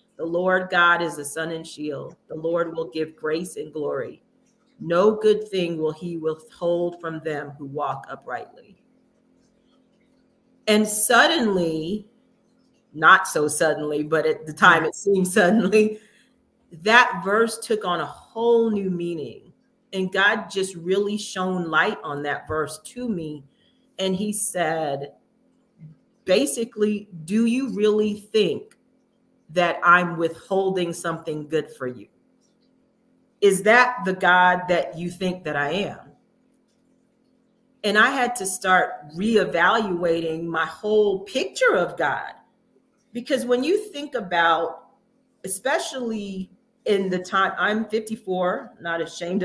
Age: 40-59